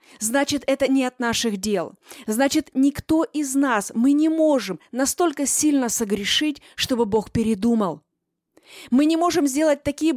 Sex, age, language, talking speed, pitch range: female, 20-39, Russian, 140 wpm, 235-300 Hz